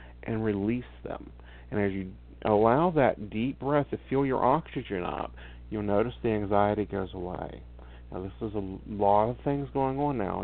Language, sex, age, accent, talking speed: English, male, 50-69, American, 180 wpm